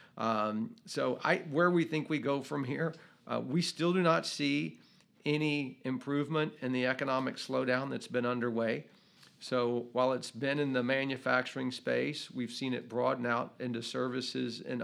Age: 40-59